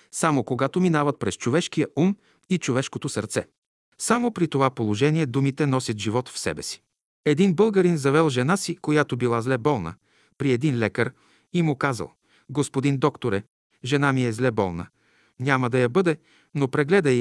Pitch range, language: 125-160 Hz, Bulgarian